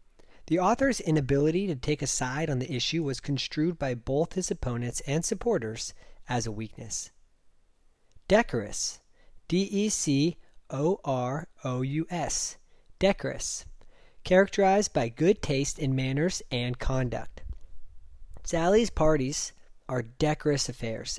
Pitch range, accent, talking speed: 120-160 Hz, American, 105 wpm